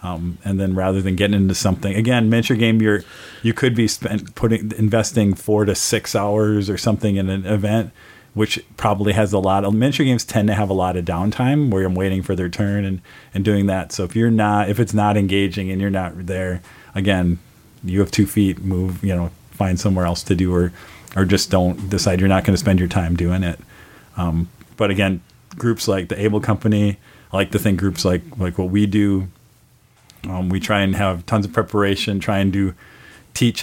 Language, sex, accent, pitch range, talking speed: English, male, American, 95-110 Hz, 215 wpm